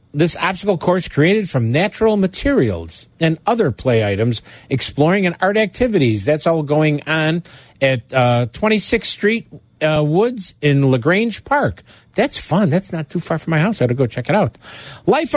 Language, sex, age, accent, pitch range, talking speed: English, male, 50-69, American, 120-170 Hz, 175 wpm